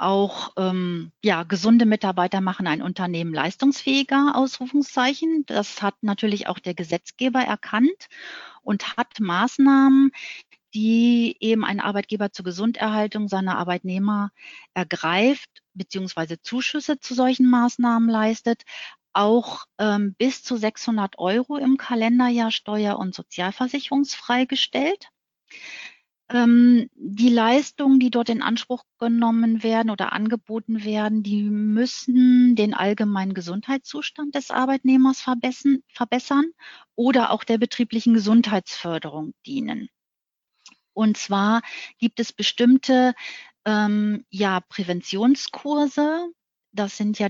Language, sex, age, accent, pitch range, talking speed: German, female, 40-59, German, 200-255 Hz, 105 wpm